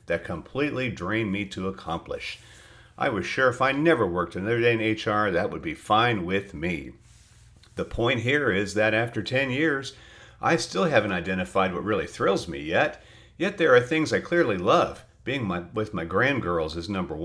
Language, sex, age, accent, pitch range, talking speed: English, male, 50-69, American, 100-130 Hz, 185 wpm